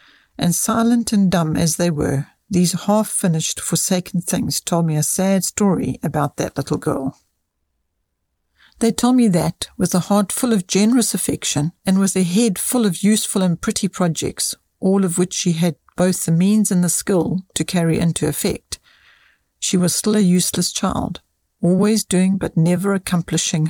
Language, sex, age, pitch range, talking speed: English, female, 60-79, 165-200 Hz, 170 wpm